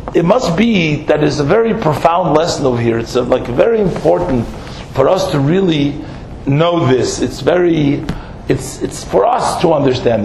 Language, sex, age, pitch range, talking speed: English, male, 50-69, 150-185 Hz, 175 wpm